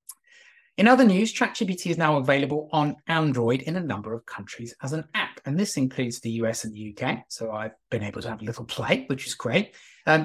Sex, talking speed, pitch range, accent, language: male, 225 wpm, 120-165 Hz, British, English